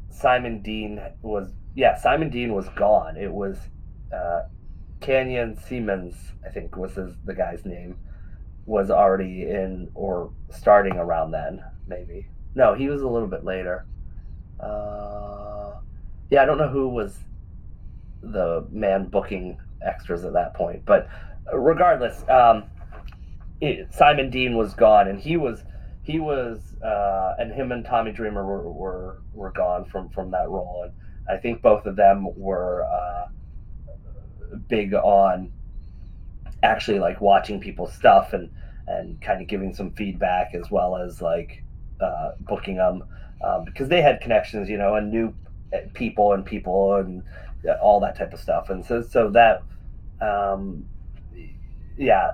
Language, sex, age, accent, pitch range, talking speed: English, male, 30-49, American, 90-105 Hz, 145 wpm